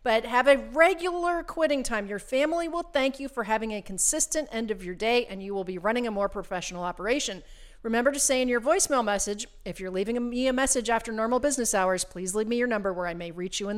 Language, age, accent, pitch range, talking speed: English, 40-59, American, 205-275 Hz, 245 wpm